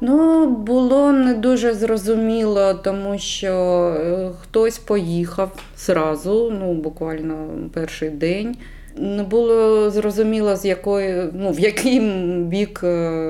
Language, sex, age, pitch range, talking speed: Ukrainian, female, 20-39, 160-205 Hz, 105 wpm